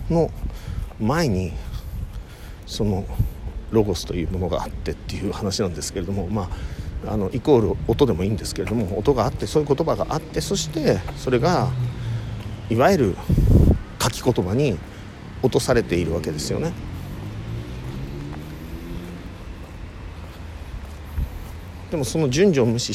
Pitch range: 85-125 Hz